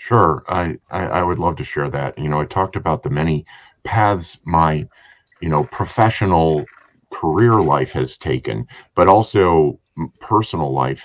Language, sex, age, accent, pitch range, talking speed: English, male, 50-69, American, 70-90 Hz, 160 wpm